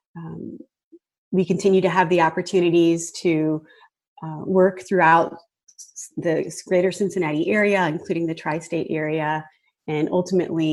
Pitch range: 165-205 Hz